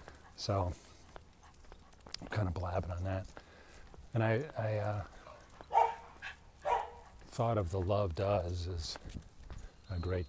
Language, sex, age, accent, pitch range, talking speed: English, male, 40-59, American, 85-105 Hz, 110 wpm